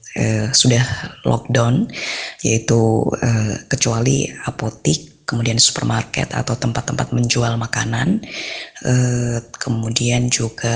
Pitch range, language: 115-130 Hz, Indonesian